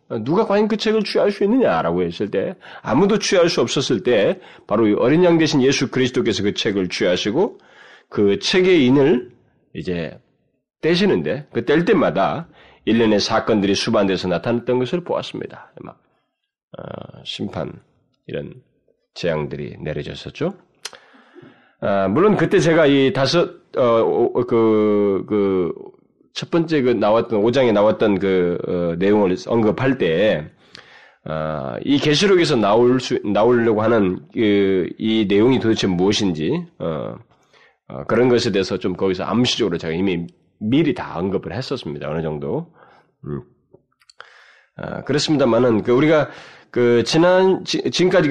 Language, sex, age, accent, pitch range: Korean, male, 30-49, native, 95-150 Hz